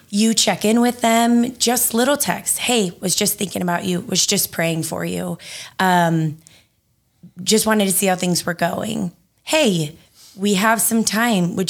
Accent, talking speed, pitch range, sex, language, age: American, 175 wpm, 165-205 Hz, female, English, 20-39